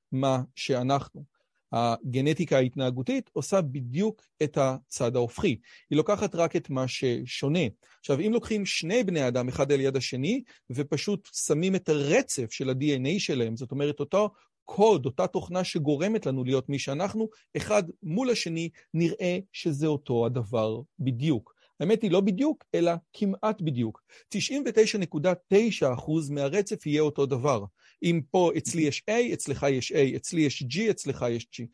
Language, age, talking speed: Hebrew, 40-59, 145 wpm